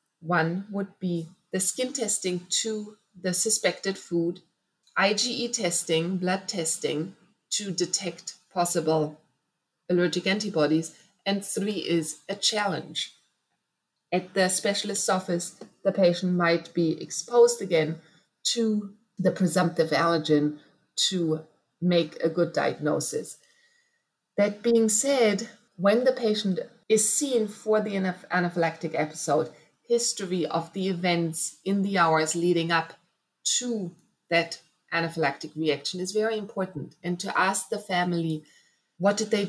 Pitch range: 165-200 Hz